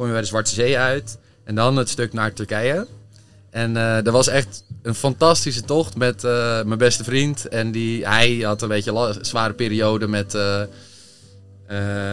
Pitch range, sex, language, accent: 105-130 Hz, male, Dutch, Dutch